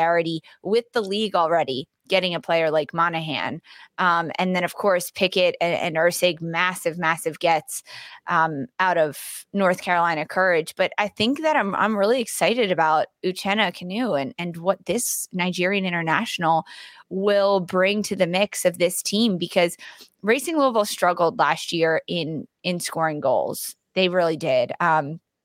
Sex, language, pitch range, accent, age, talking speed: female, English, 165-200 Hz, American, 20-39, 155 wpm